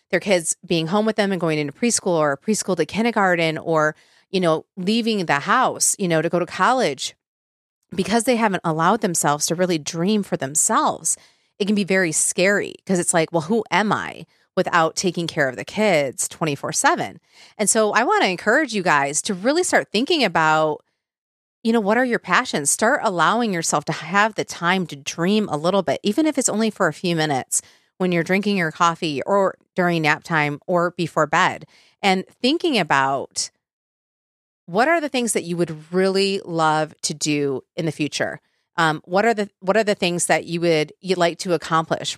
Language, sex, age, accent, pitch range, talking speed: English, female, 30-49, American, 155-210 Hz, 195 wpm